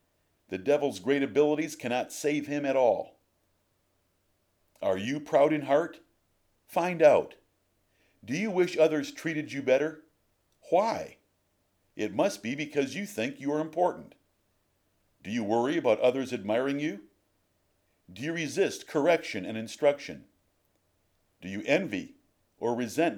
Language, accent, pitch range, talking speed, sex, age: English, American, 95-145 Hz, 130 wpm, male, 50-69